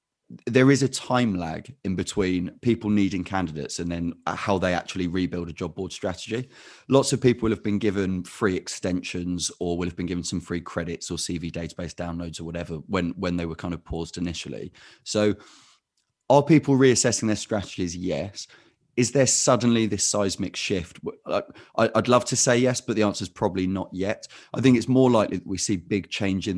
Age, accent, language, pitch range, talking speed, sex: 30-49, British, English, 85-110 Hz, 195 wpm, male